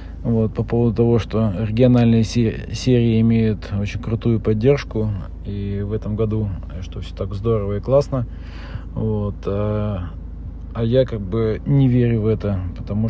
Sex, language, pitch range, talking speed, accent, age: male, Russian, 95-115 Hz, 150 wpm, native, 40-59